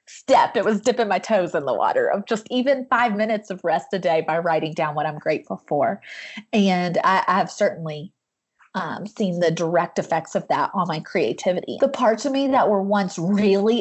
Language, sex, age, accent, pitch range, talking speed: English, female, 30-49, American, 180-230 Hz, 210 wpm